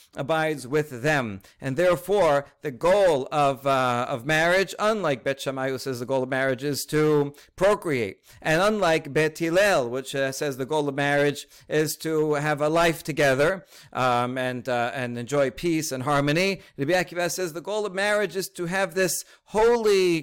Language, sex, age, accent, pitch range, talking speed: English, male, 50-69, American, 130-160 Hz, 170 wpm